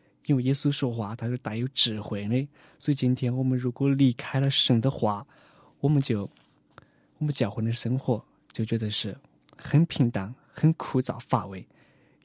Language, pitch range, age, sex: Chinese, 115-140 Hz, 20-39, male